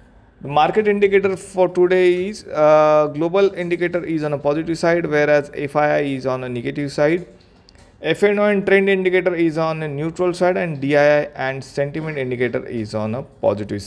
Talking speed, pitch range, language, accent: 170 wpm, 145-180 Hz, English, Indian